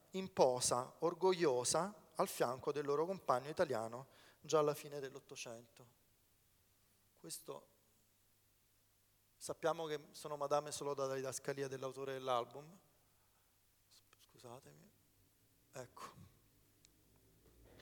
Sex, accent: male, native